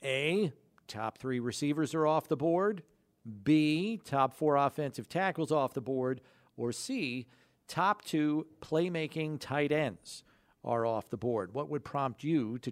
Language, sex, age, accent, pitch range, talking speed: English, male, 50-69, American, 125-155 Hz, 150 wpm